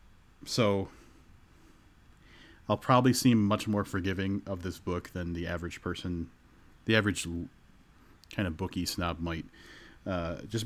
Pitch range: 85-100 Hz